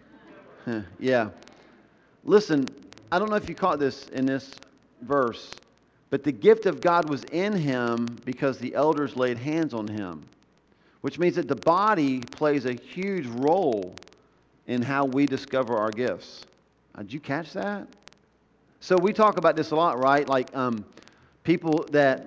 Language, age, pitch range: English, 40-59, 130-170 Hz